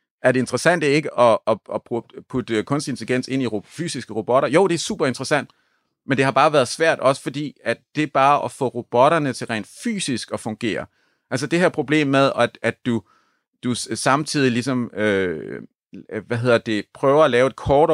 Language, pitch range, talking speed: Danish, 115-140 Hz, 205 wpm